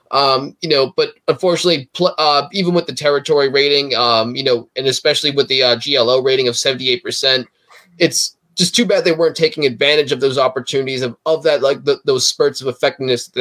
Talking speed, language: 200 wpm, English